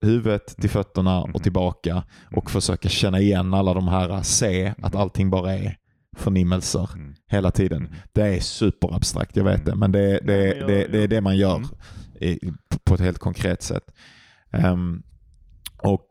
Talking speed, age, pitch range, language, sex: 170 wpm, 30-49, 90-100 Hz, Swedish, male